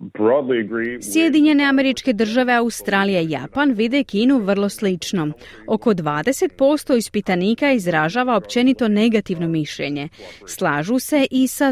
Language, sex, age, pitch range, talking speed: Croatian, female, 30-49, 175-260 Hz, 110 wpm